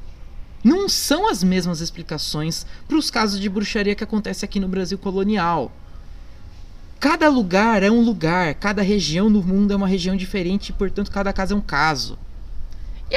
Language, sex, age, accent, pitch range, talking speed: Portuguese, male, 20-39, Brazilian, 150-225 Hz, 170 wpm